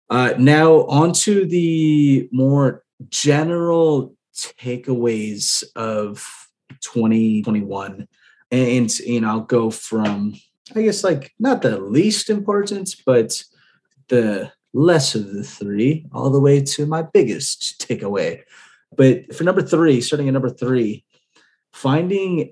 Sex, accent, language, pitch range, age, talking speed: male, American, English, 110-155 Hz, 30-49, 115 wpm